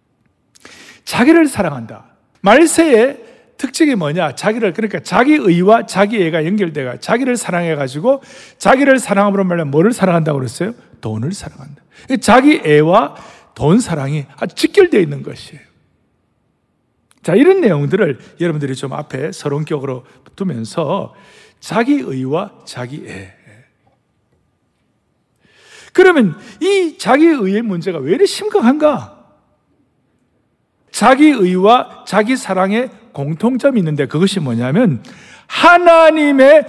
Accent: native